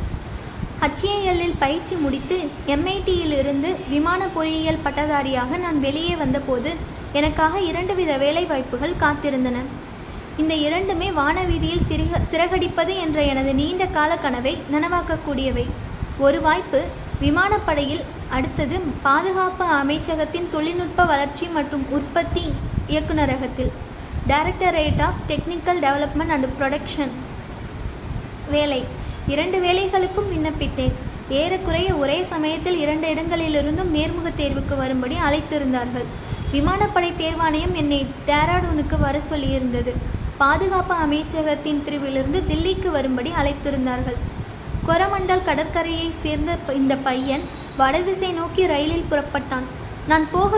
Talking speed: 95 wpm